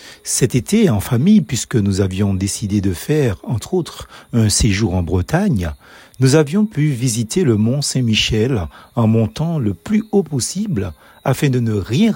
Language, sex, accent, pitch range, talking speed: French, male, French, 110-175 Hz, 160 wpm